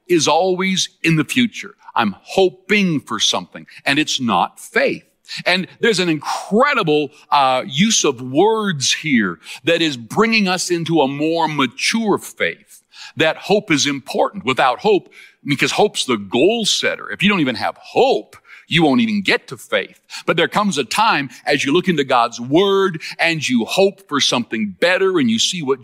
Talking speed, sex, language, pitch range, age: 175 wpm, male, English, 145-210 Hz, 60-79